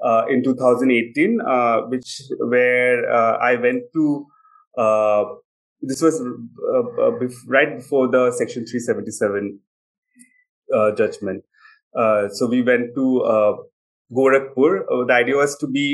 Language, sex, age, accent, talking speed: English, male, 30-49, Indian, 130 wpm